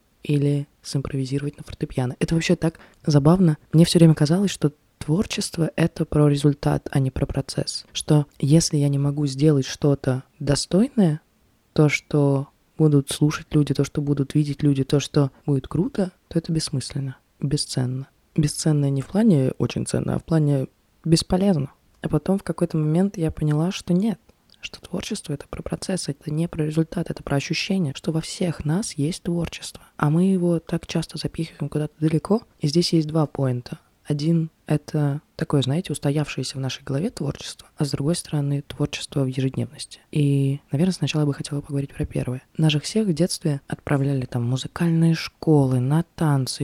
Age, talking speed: 20-39, 170 wpm